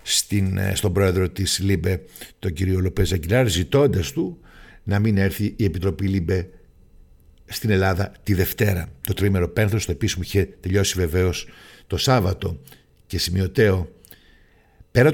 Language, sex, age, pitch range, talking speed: Greek, male, 60-79, 95-110 Hz, 135 wpm